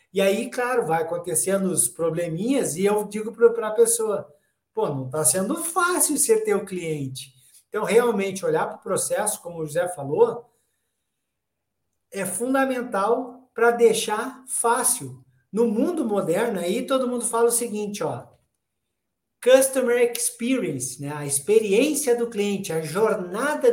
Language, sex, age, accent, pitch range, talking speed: Portuguese, male, 50-69, Brazilian, 190-250 Hz, 140 wpm